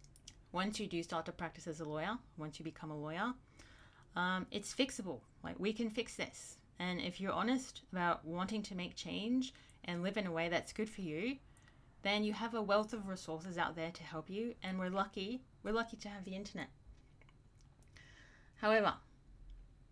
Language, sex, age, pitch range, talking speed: English, female, 30-49, 145-195 Hz, 185 wpm